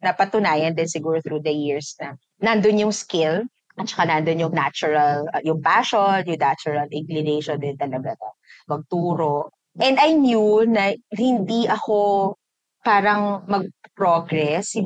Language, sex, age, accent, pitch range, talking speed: Filipino, female, 20-39, native, 155-215 Hz, 130 wpm